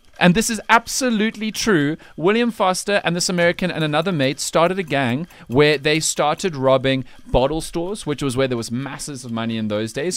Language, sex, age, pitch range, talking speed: English, male, 30-49, 120-160 Hz, 195 wpm